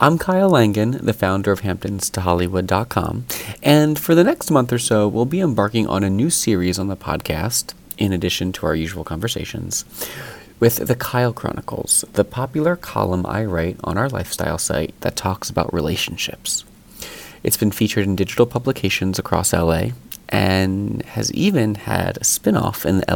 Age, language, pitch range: 30-49, English, 90-120 Hz